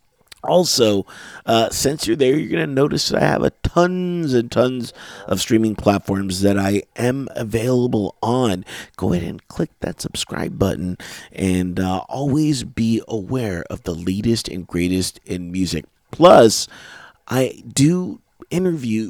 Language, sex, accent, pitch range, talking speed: English, male, American, 95-120 Hz, 150 wpm